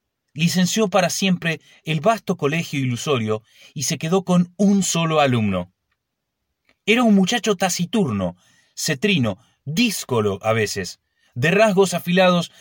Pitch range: 120-185 Hz